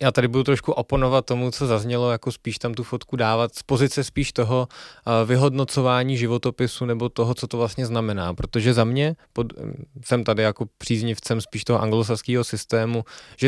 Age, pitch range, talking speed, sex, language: 20-39, 115-130 Hz, 175 wpm, male, Czech